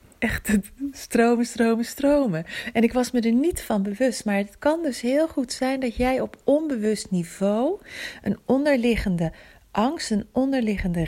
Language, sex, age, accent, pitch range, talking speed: Dutch, female, 40-59, Dutch, 180-225 Hz, 155 wpm